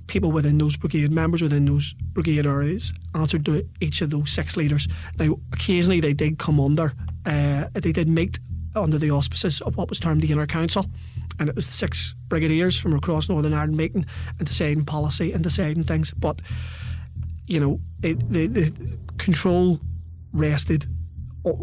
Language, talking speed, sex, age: English, 165 wpm, male, 30-49